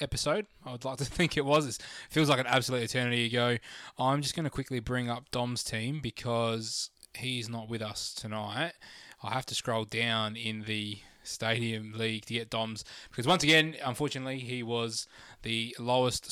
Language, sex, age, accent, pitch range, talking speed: English, male, 20-39, Australian, 115-135 Hz, 185 wpm